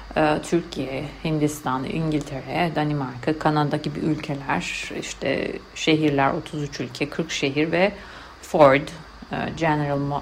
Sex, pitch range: female, 140-175 Hz